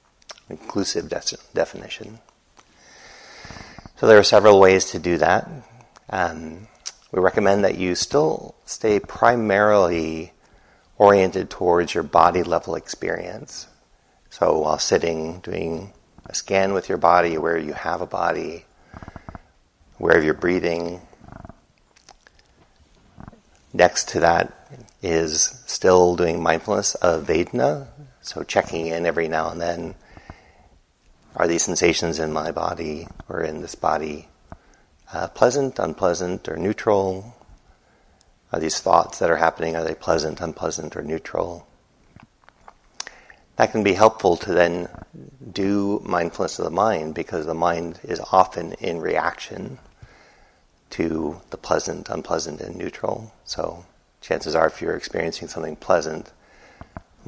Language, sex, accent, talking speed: English, male, American, 125 wpm